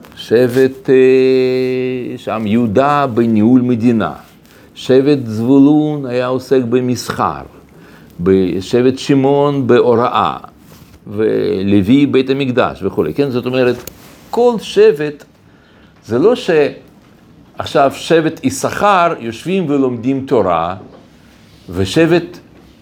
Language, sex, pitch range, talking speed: Hebrew, male, 125-180 Hz, 80 wpm